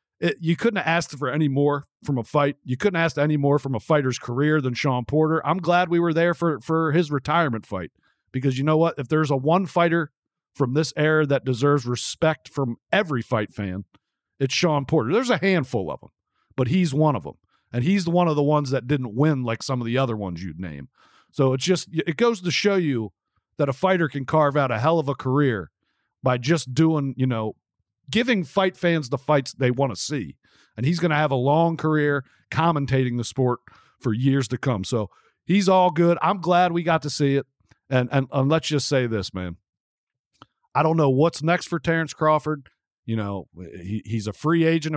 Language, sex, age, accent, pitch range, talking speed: English, male, 40-59, American, 130-165 Hz, 220 wpm